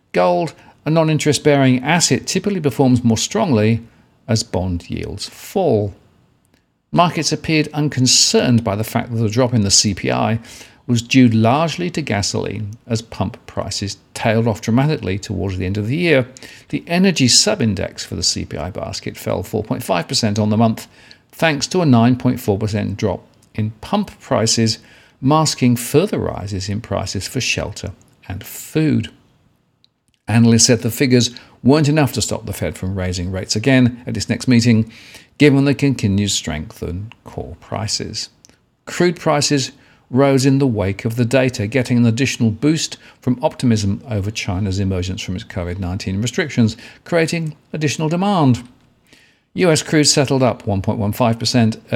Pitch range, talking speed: 105-140 Hz, 145 wpm